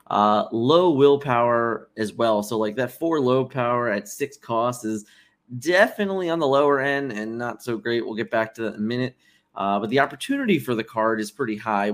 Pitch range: 110-140 Hz